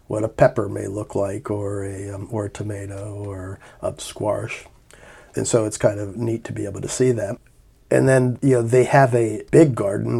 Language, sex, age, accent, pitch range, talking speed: English, male, 40-59, American, 100-120 Hz, 210 wpm